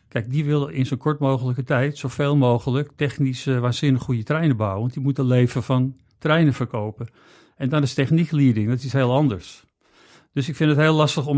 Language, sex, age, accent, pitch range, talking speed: Dutch, male, 50-69, Dutch, 120-135 Hz, 200 wpm